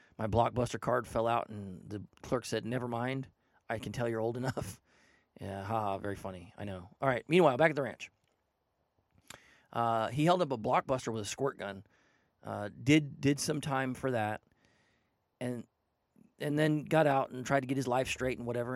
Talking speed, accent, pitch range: 200 wpm, American, 110-135 Hz